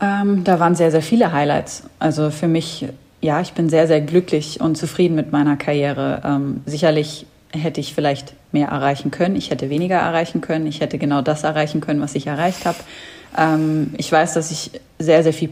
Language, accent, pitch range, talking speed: German, German, 145-165 Hz, 200 wpm